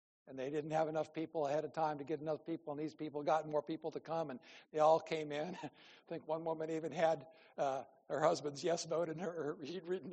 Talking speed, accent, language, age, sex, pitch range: 235 wpm, American, English, 60-79, male, 155-190 Hz